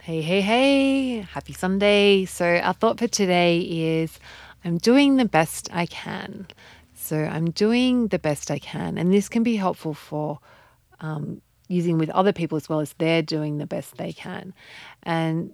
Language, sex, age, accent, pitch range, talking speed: English, female, 30-49, Australian, 160-200 Hz, 175 wpm